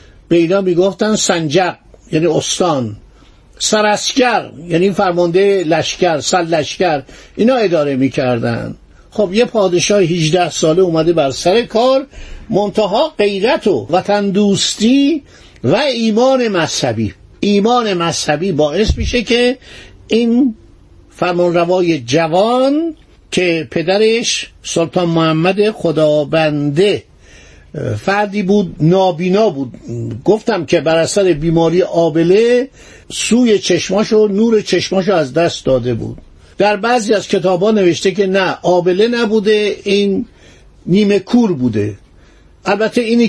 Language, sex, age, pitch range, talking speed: Persian, male, 60-79, 165-215 Hz, 110 wpm